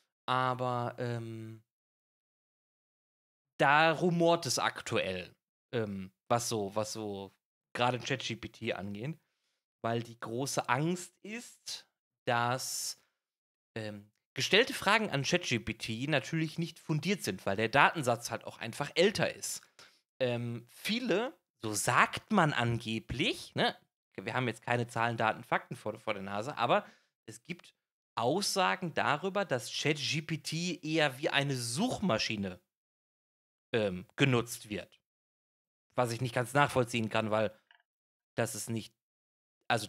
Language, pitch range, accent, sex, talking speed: German, 110-160 Hz, German, male, 120 wpm